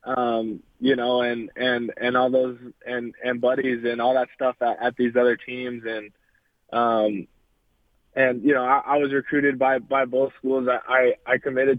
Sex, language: male, English